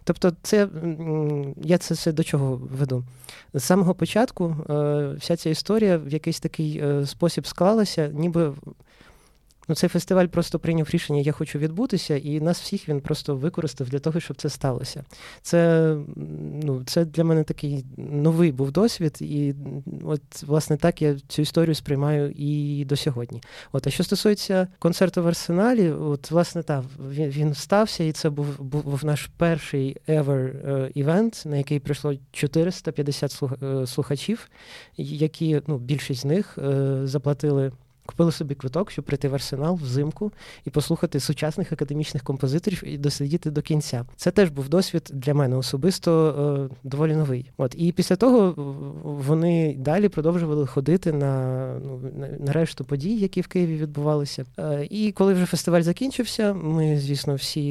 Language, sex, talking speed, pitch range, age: Ukrainian, male, 150 wpm, 140-170 Hz, 20-39